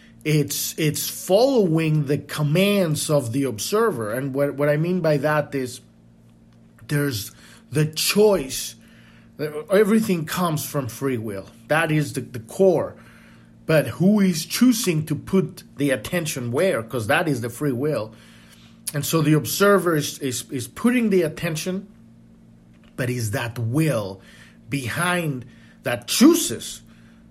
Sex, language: male, English